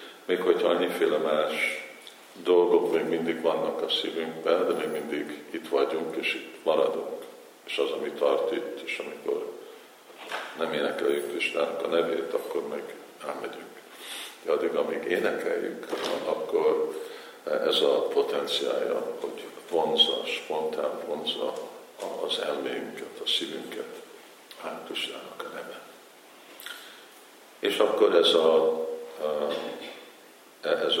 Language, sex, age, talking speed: Hungarian, male, 50-69, 110 wpm